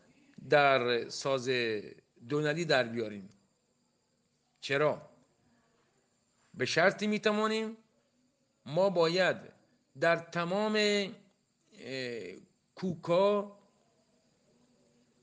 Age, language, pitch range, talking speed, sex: 50-69, Persian, 135-185 Hz, 55 wpm, male